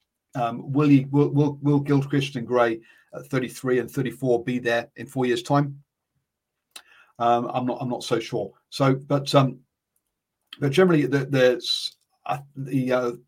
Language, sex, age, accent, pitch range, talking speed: English, male, 40-59, British, 125-145 Hz, 165 wpm